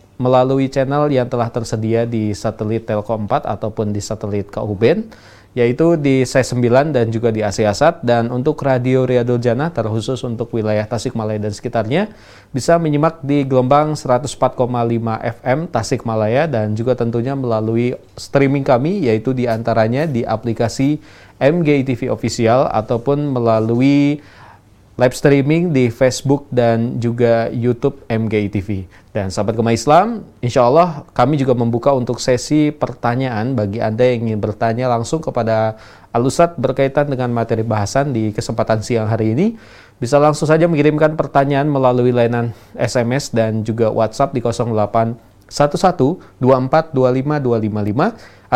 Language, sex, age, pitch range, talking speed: Indonesian, male, 20-39, 110-140 Hz, 130 wpm